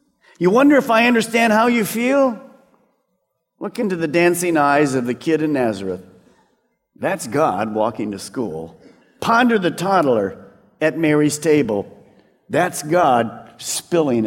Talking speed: 135 wpm